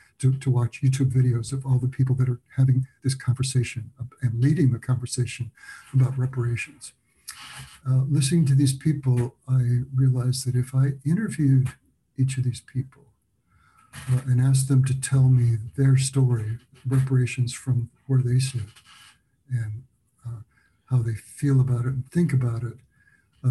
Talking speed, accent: 155 wpm, American